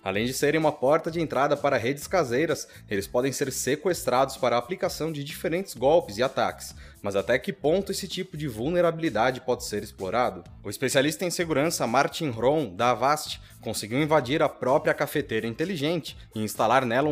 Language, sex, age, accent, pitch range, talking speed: Portuguese, male, 20-39, Brazilian, 120-165 Hz, 175 wpm